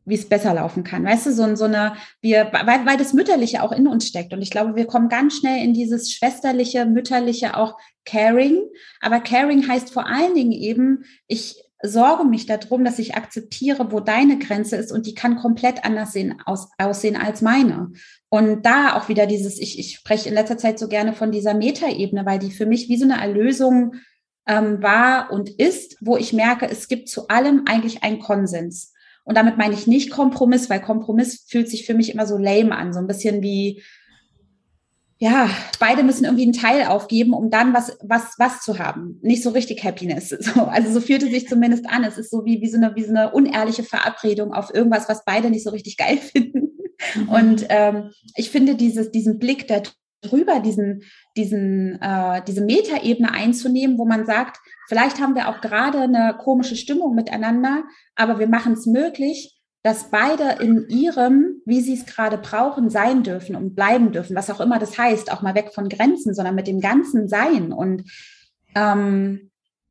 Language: German